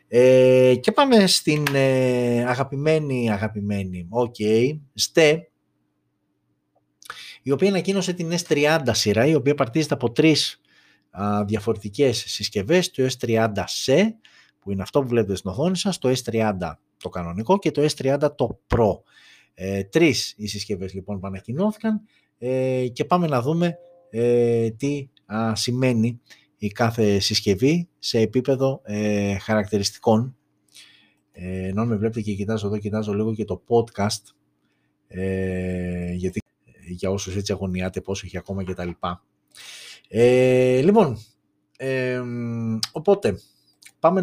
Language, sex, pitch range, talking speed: Greek, male, 105-140 Hz, 125 wpm